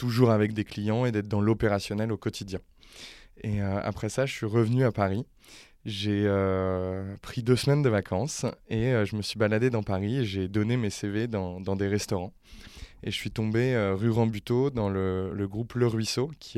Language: French